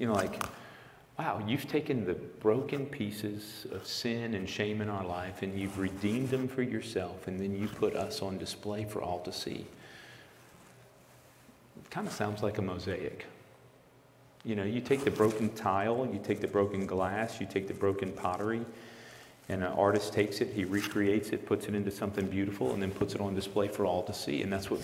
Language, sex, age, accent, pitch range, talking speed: English, male, 40-59, American, 95-110 Hz, 200 wpm